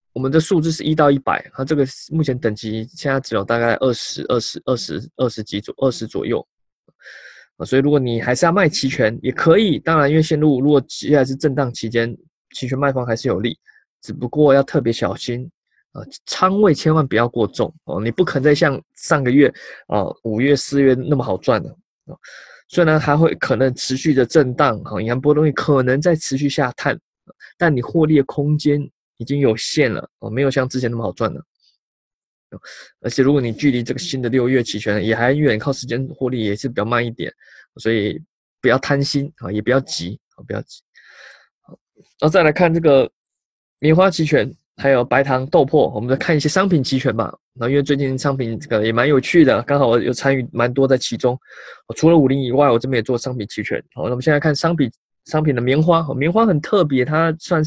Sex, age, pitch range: male, 20-39, 120-150 Hz